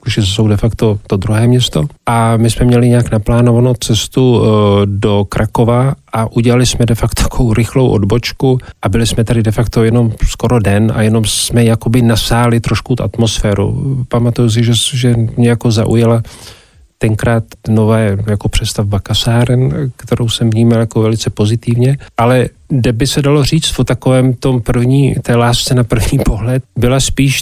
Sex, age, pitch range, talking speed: male, 40-59, 110-120 Hz, 165 wpm